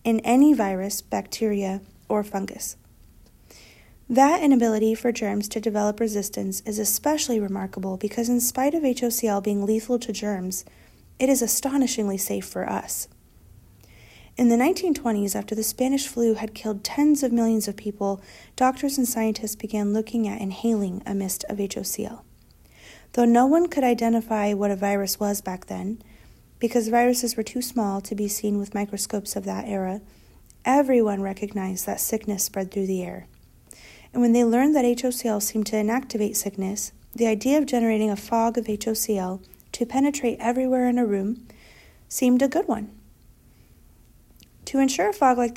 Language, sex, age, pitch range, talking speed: English, female, 40-59, 205-240 Hz, 160 wpm